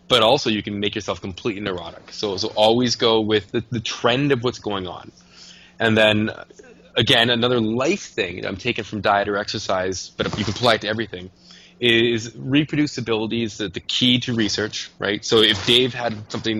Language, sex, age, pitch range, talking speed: English, male, 20-39, 105-120 Hz, 190 wpm